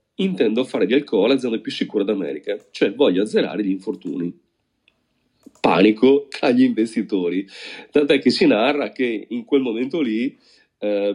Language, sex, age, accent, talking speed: Italian, male, 40-59, native, 140 wpm